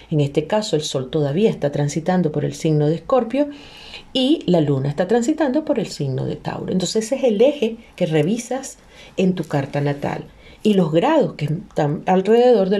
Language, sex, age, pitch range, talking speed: Spanish, female, 40-59, 170-225 Hz, 190 wpm